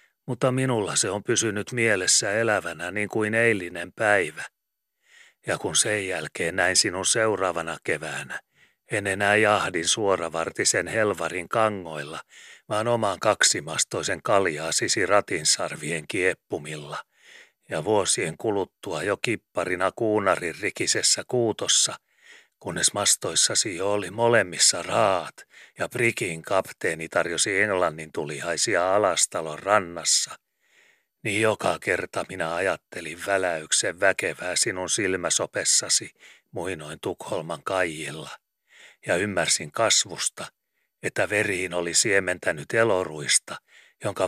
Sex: male